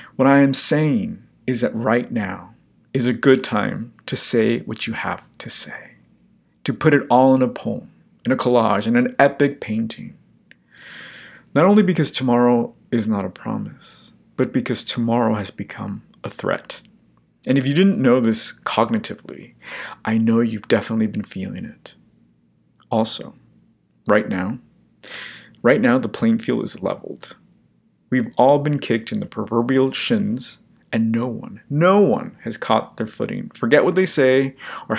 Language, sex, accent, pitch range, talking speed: English, male, American, 115-150 Hz, 160 wpm